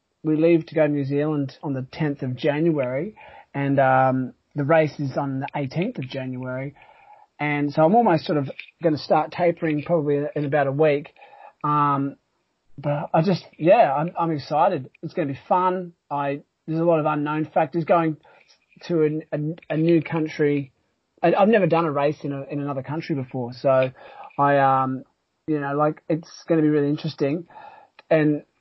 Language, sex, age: English, male, 30-49